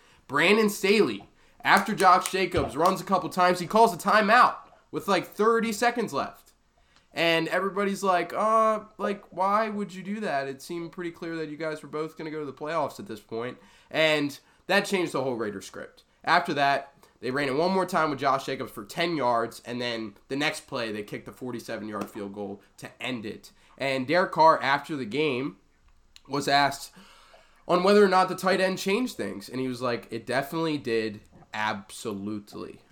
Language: English